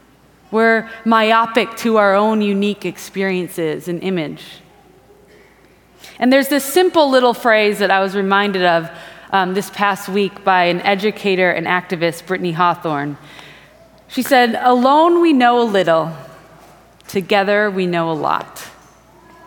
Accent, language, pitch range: American, English, 195-260 Hz